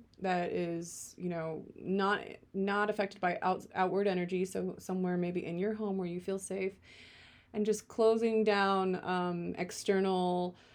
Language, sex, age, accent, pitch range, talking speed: English, female, 20-39, American, 175-215 Hz, 150 wpm